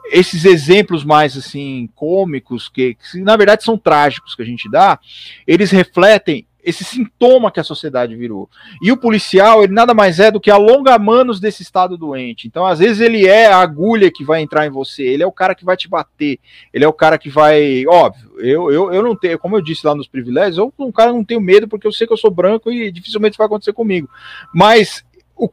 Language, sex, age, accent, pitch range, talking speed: Portuguese, male, 40-59, Brazilian, 155-220 Hz, 225 wpm